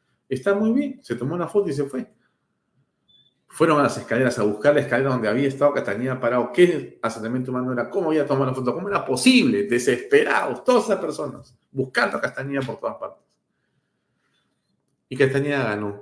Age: 50-69